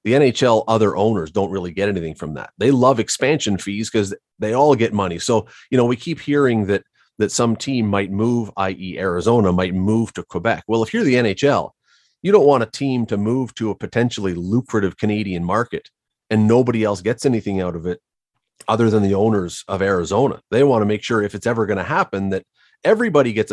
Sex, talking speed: male, 210 wpm